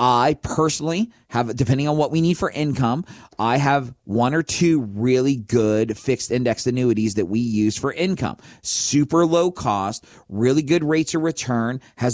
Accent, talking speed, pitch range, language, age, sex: American, 170 wpm, 120-160 Hz, English, 40-59, male